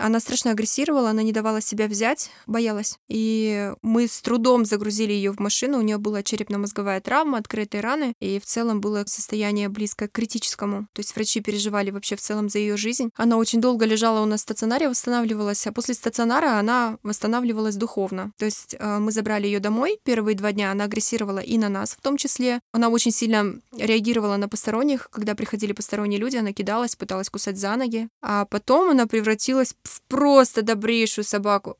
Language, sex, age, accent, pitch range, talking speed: Russian, female, 20-39, native, 210-240 Hz, 185 wpm